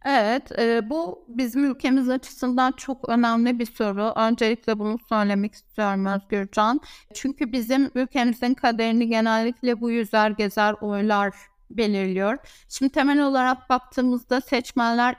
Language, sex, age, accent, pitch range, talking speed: Turkish, female, 60-79, native, 215-250 Hz, 120 wpm